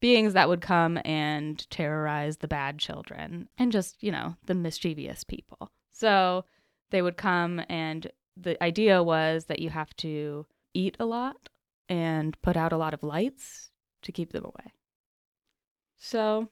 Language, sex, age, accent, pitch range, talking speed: English, female, 20-39, American, 155-190 Hz, 155 wpm